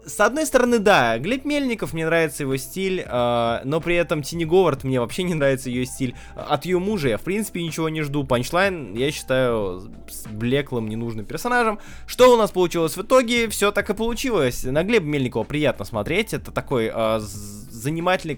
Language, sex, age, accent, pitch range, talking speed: Russian, male, 20-39, native, 115-170 Hz, 185 wpm